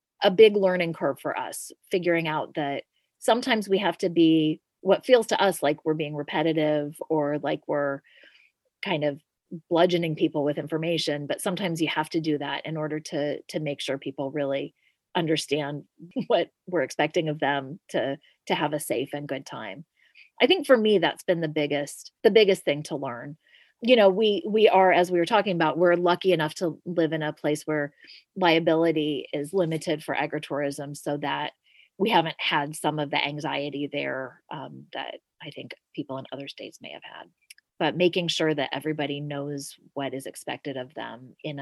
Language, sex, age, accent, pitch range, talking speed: English, female, 30-49, American, 145-175 Hz, 185 wpm